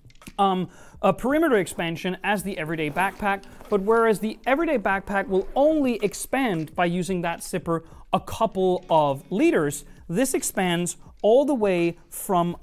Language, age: English, 30-49